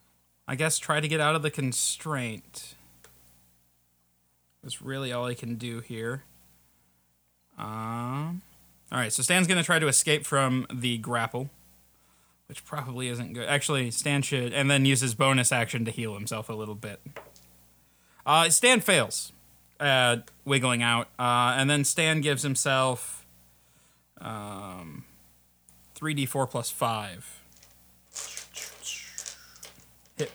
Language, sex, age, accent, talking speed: English, male, 30-49, American, 125 wpm